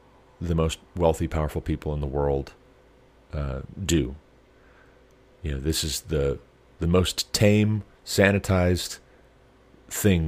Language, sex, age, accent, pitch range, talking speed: English, male, 40-59, American, 75-100 Hz, 115 wpm